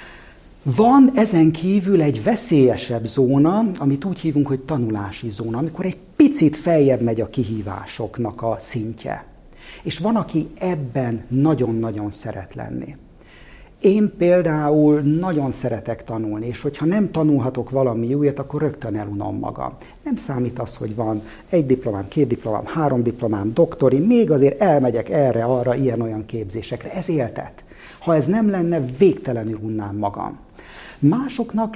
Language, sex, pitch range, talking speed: Hungarian, male, 115-160 Hz, 135 wpm